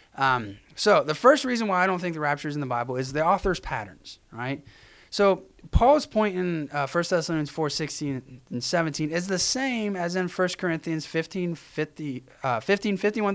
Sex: male